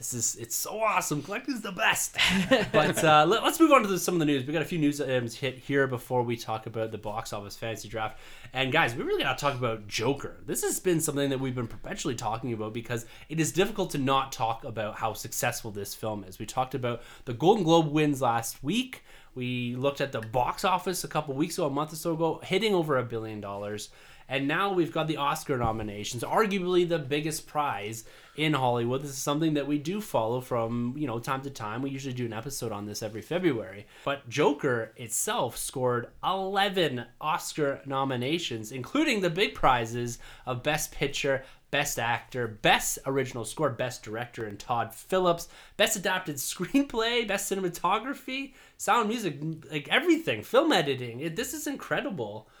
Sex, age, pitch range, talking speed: male, 20-39, 120-170 Hz, 200 wpm